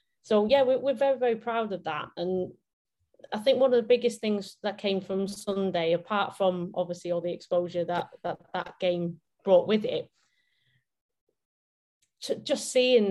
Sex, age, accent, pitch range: female, 30-49, British, 175-210 Hz